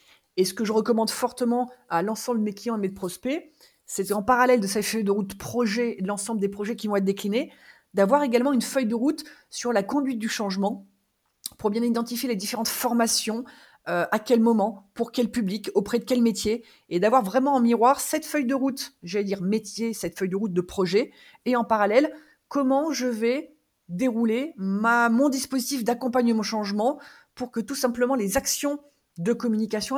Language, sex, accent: French, female, French